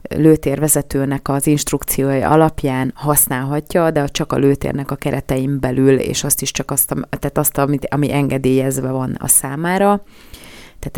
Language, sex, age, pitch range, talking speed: Hungarian, female, 30-49, 135-150 Hz, 135 wpm